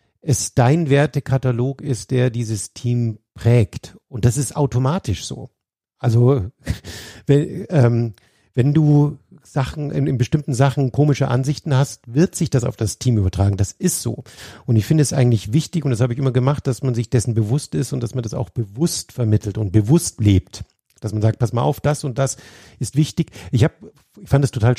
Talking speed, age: 195 wpm, 50-69